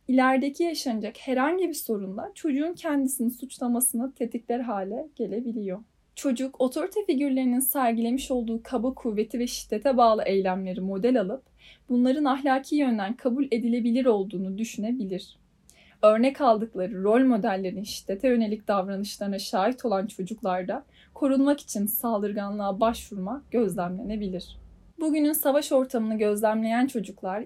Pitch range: 210-265 Hz